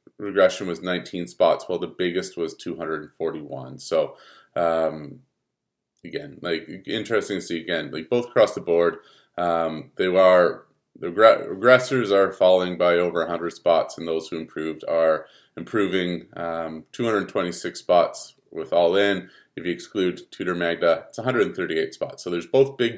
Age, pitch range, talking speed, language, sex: 30-49, 85-115 Hz, 150 wpm, English, male